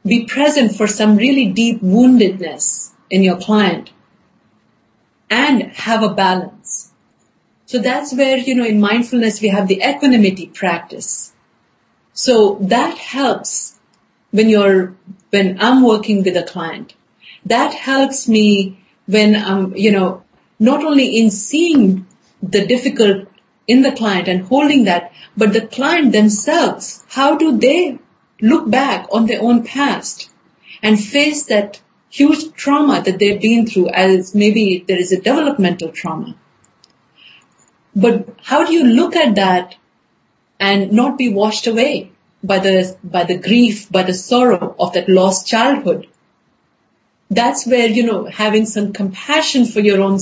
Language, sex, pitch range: English, female, 195-250 Hz